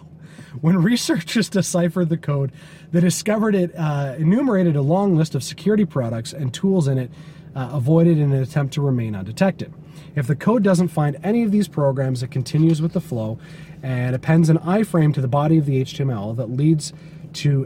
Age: 30-49